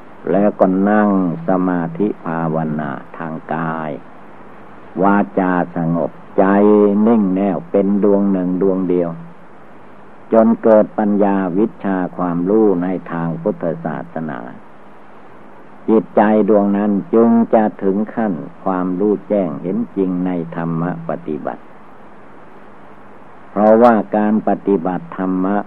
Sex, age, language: male, 60-79, Thai